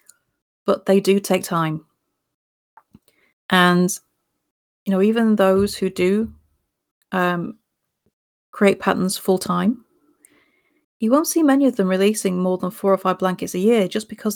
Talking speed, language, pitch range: 140 wpm, English, 180-230 Hz